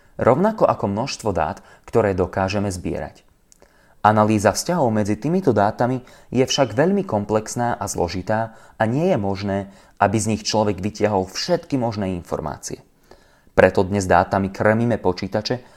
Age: 30-49